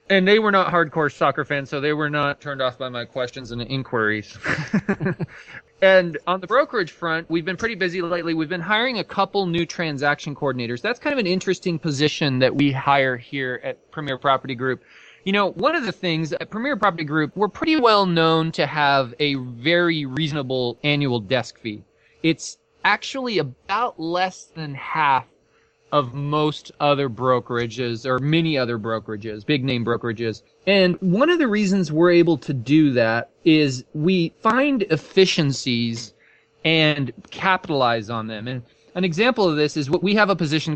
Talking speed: 175 wpm